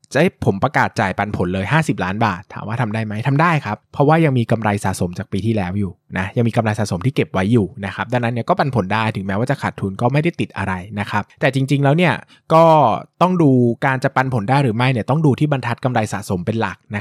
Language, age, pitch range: Thai, 20-39, 105-140 Hz